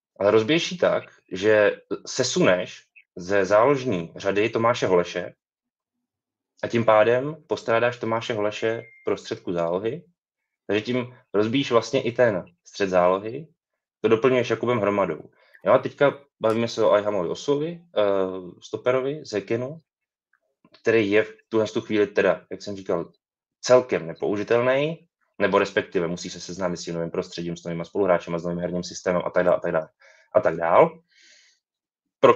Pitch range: 95-135 Hz